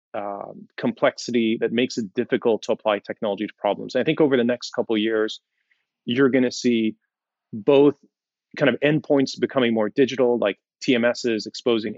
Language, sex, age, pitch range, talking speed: English, male, 30-49, 110-135 Hz, 170 wpm